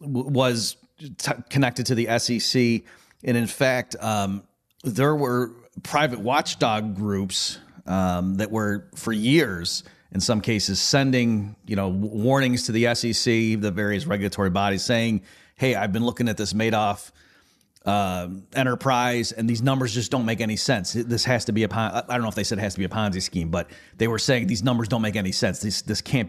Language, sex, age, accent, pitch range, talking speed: English, male, 40-59, American, 105-130 Hz, 190 wpm